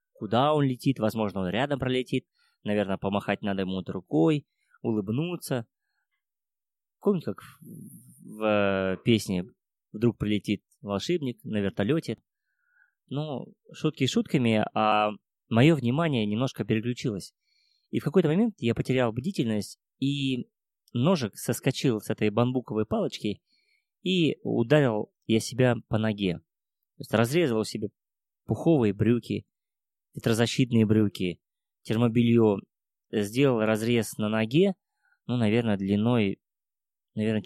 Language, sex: Russian, male